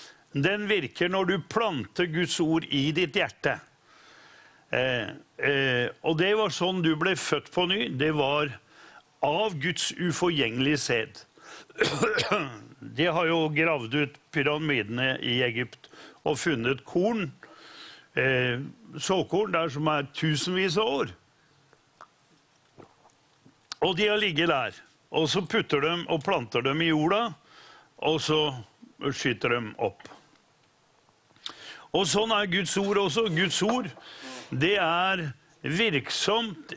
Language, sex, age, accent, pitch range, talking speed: English, male, 60-79, Swedish, 140-185 Hz, 125 wpm